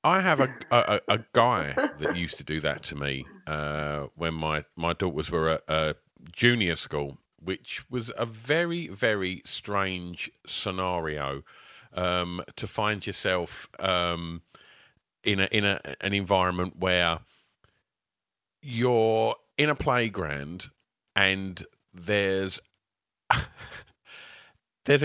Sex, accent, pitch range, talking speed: male, British, 85-125 Hz, 115 wpm